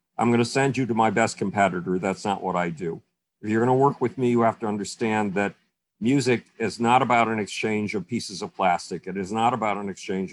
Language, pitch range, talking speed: English, 100-125 Hz, 245 wpm